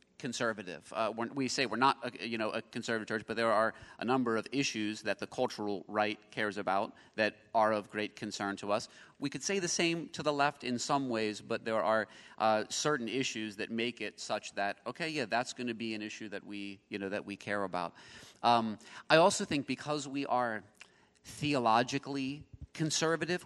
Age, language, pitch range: 30-49, English, 110-140 Hz